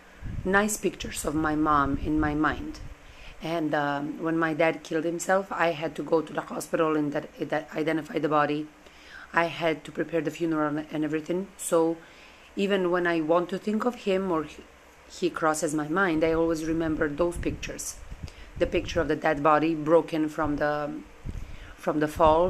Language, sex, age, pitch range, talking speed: English, female, 30-49, 150-170 Hz, 180 wpm